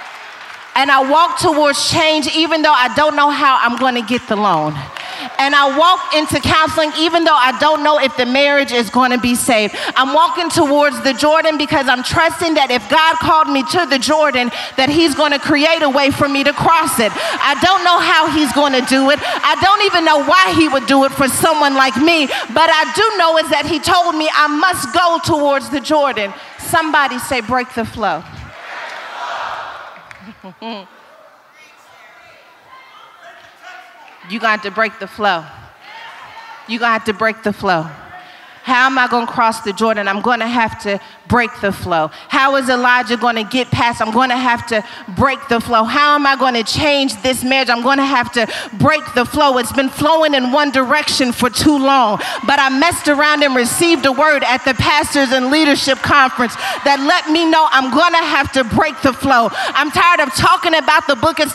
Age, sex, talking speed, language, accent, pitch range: 40-59, female, 205 wpm, English, American, 250-320 Hz